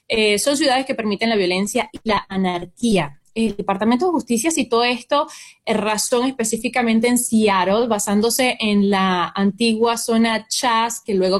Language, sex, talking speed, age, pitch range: Spanish, female, 155 wpm, 20-39, 195-235 Hz